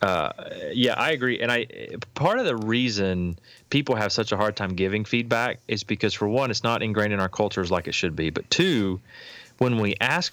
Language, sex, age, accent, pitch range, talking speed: English, male, 30-49, American, 95-115 Hz, 215 wpm